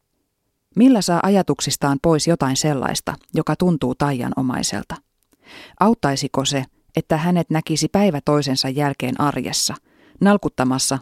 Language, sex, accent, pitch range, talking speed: Finnish, female, native, 135-180 Hz, 105 wpm